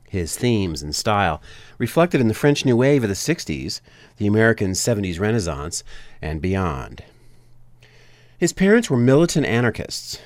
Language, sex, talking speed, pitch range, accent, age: English, male, 140 wpm, 85-130 Hz, American, 40-59